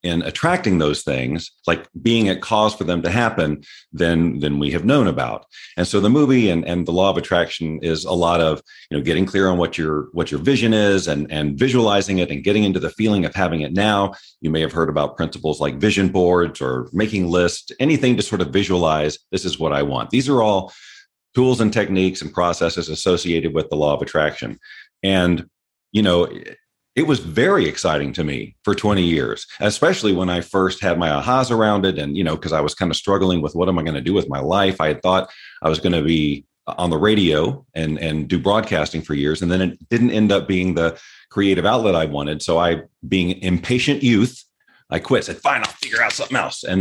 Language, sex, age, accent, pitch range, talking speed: English, male, 40-59, American, 80-100 Hz, 225 wpm